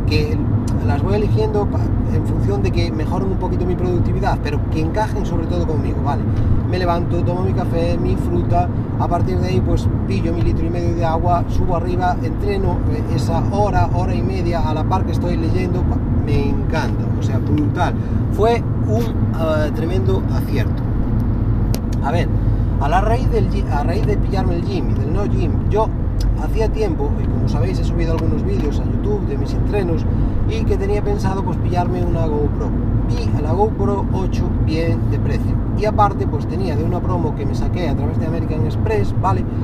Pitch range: 105-115 Hz